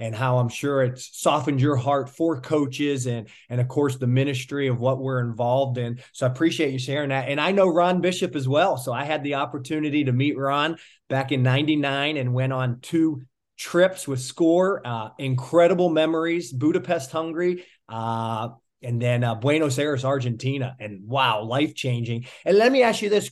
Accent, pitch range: American, 130-165 Hz